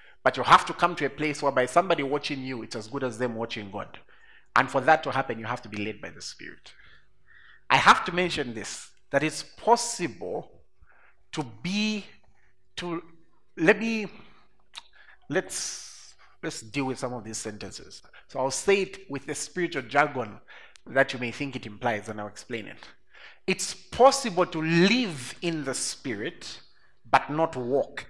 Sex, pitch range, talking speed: male, 120-180 Hz, 175 wpm